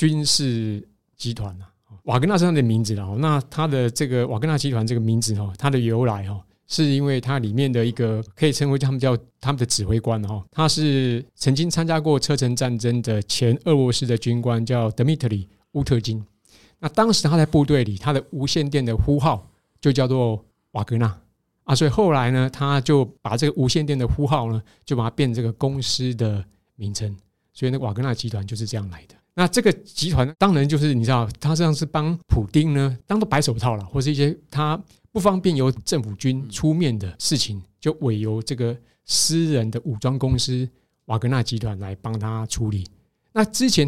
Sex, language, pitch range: male, Chinese, 110-145 Hz